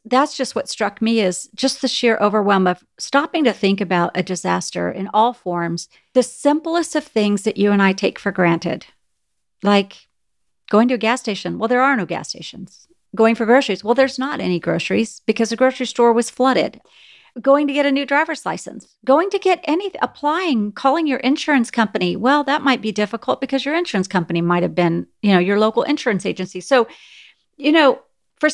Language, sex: English, female